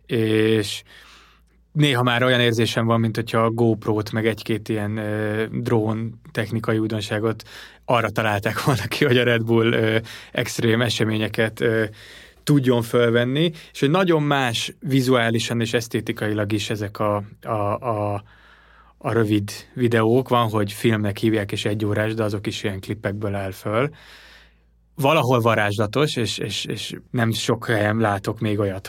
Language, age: Hungarian, 20-39